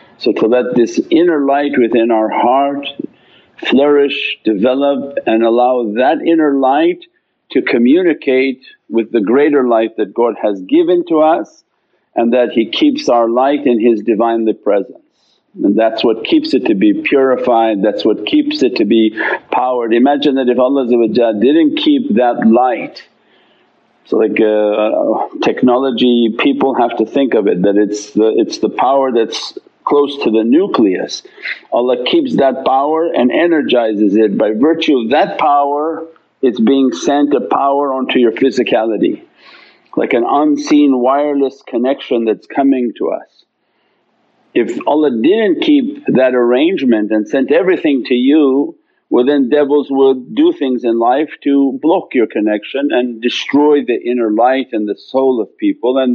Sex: male